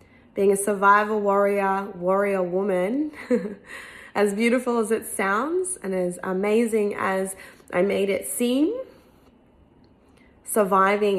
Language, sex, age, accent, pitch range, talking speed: English, female, 20-39, Australian, 190-225 Hz, 105 wpm